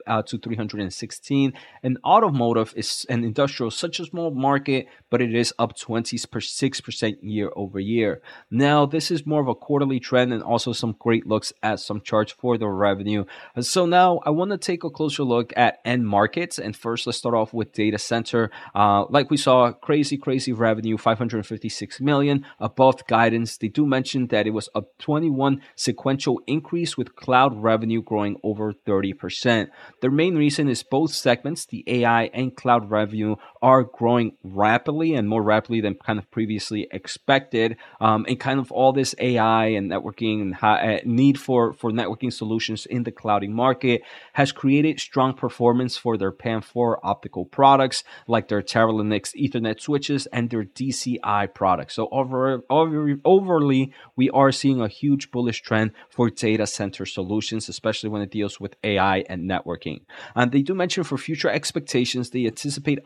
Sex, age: male, 20-39